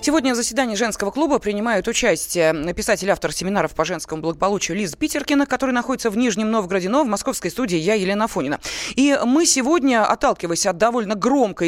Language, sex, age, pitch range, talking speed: Russian, female, 20-39, 185-245 Hz, 170 wpm